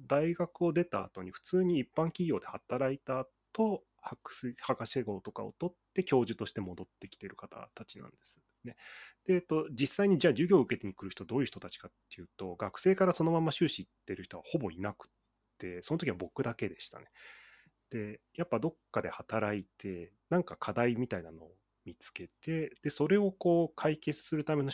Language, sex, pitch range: Japanese, male, 95-160 Hz